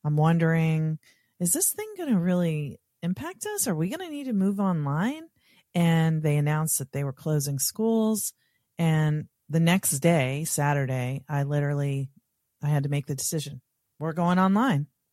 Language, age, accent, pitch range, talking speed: English, 40-59, American, 140-175 Hz, 165 wpm